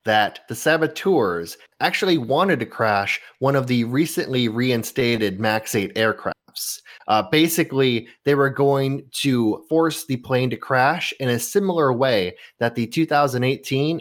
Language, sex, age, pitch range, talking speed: English, male, 30-49, 115-145 Hz, 140 wpm